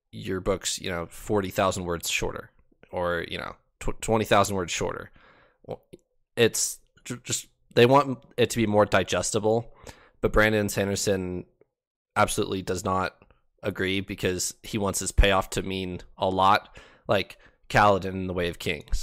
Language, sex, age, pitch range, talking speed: English, male, 20-39, 90-105 Hz, 155 wpm